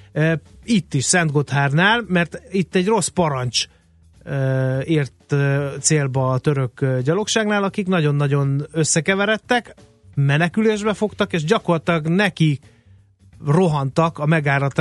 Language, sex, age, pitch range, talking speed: Hungarian, male, 30-49, 140-170 Hz, 100 wpm